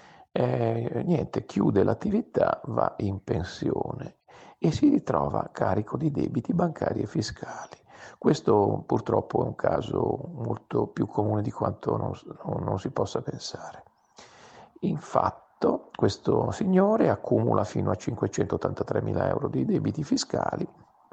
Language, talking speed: Italian, 125 wpm